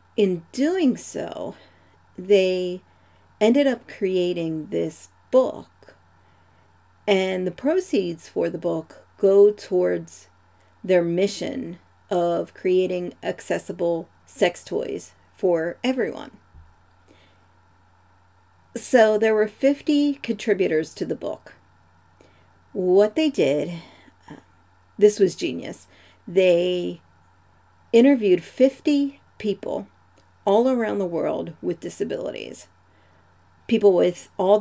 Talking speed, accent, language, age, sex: 90 wpm, American, English, 40-59, female